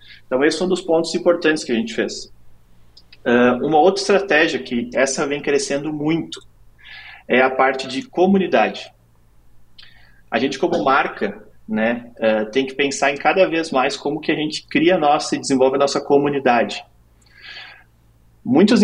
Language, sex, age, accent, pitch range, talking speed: Portuguese, male, 30-49, Brazilian, 120-155 Hz, 155 wpm